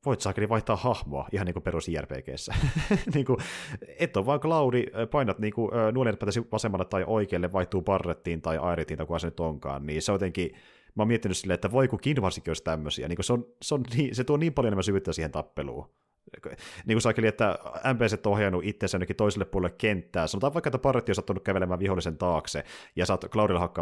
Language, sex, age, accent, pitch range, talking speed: Finnish, male, 30-49, native, 85-110 Hz, 205 wpm